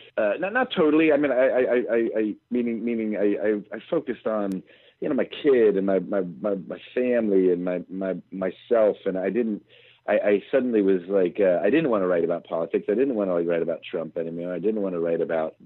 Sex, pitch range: male, 90-130 Hz